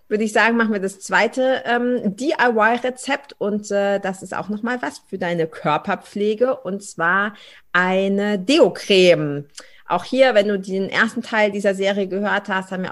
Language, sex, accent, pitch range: German, female, German, 170-210 Hz